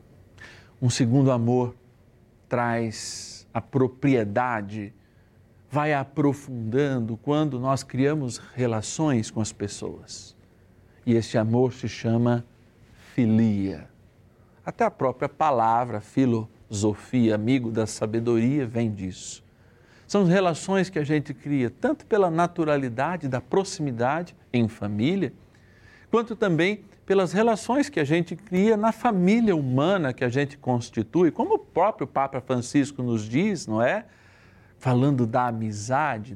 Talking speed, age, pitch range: 115 wpm, 50-69, 110-145 Hz